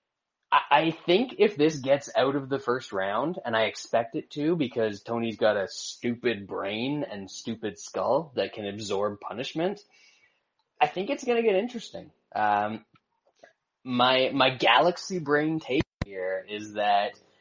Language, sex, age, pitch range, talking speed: English, male, 20-39, 115-160 Hz, 150 wpm